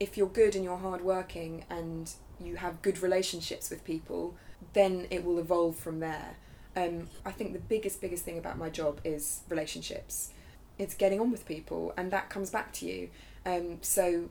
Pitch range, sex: 170-195 Hz, female